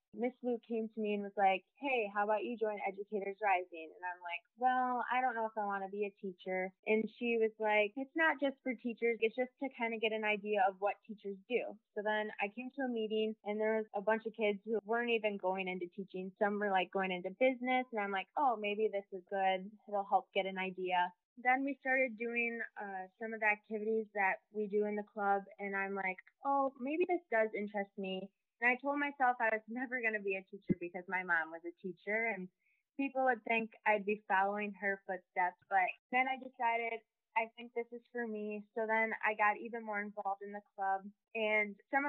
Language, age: English, 20-39